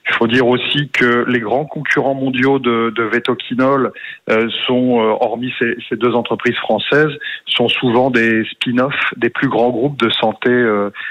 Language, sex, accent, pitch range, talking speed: French, male, French, 110-125 Hz, 175 wpm